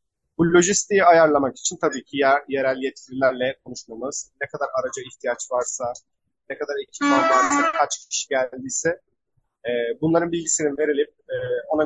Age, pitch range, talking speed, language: 30-49, 130-175 Hz, 140 wpm, Turkish